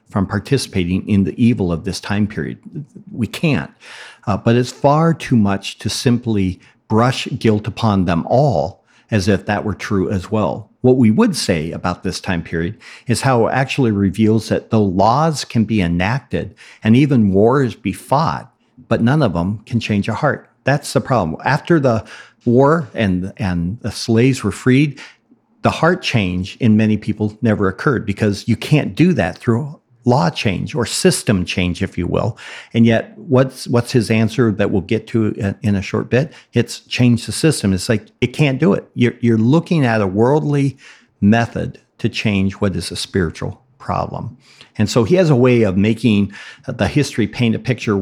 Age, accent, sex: 50-69, American, male